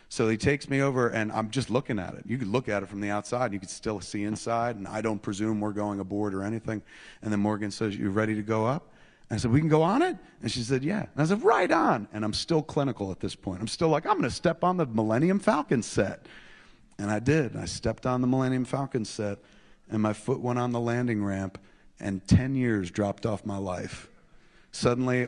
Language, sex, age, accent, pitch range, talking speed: Swedish, male, 40-59, American, 105-125 Hz, 245 wpm